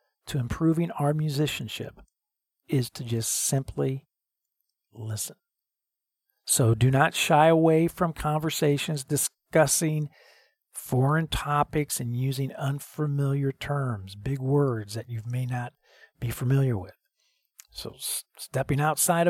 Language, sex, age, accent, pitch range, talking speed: English, male, 50-69, American, 130-170 Hz, 110 wpm